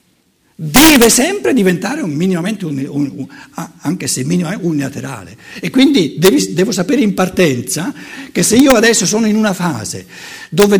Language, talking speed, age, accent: Italian, 155 wpm, 60-79, native